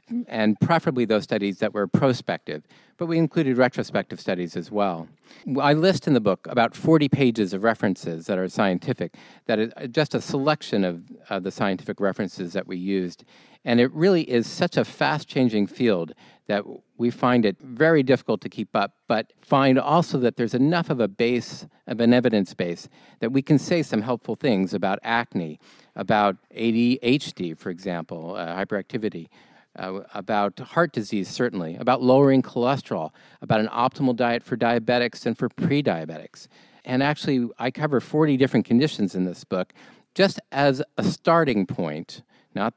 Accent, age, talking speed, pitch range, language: American, 50-69, 165 wpm, 110-150 Hz, English